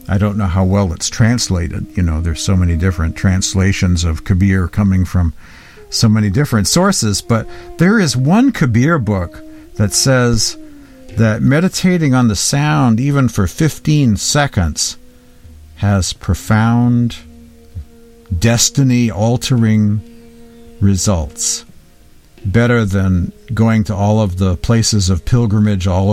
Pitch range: 90-115 Hz